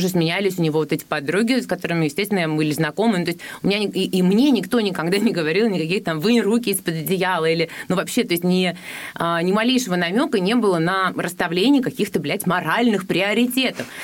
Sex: female